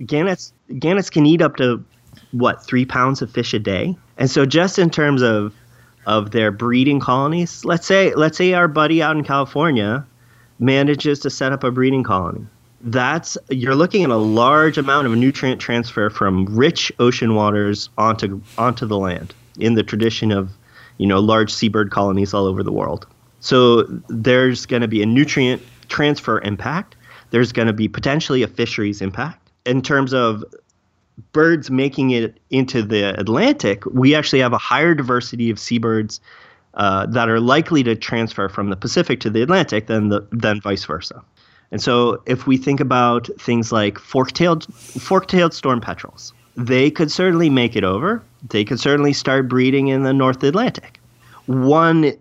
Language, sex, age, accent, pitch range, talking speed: English, male, 30-49, American, 110-140 Hz, 170 wpm